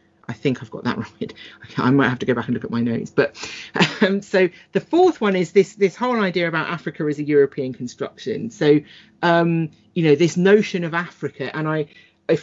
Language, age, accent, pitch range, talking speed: English, 40-59, British, 130-165 Hz, 215 wpm